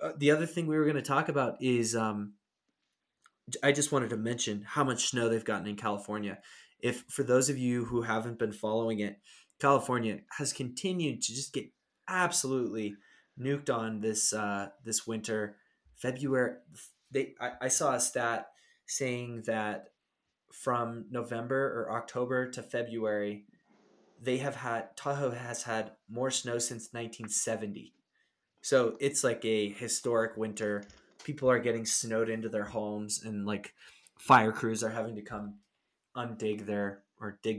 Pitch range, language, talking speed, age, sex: 105-125 Hz, English, 155 wpm, 20-39, male